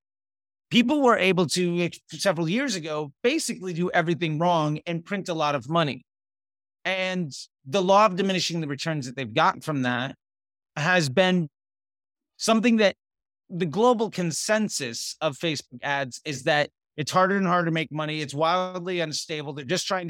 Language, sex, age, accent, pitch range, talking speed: English, male, 30-49, American, 145-185 Hz, 160 wpm